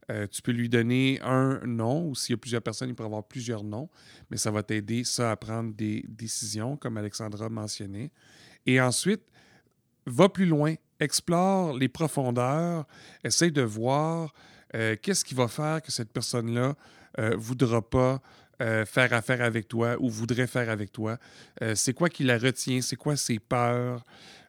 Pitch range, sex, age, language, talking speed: 115-135 Hz, male, 40-59, French, 180 wpm